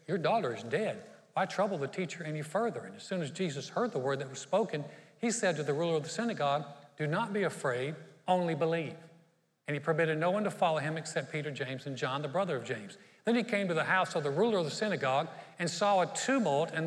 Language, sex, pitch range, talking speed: English, male, 155-195 Hz, 245 wpm